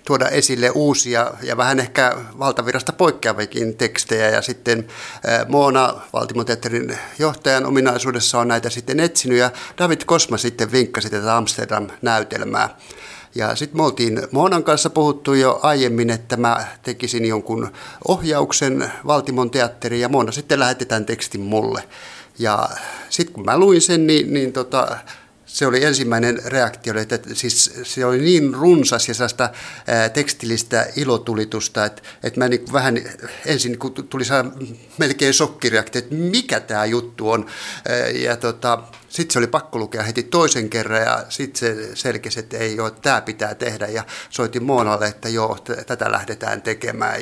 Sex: male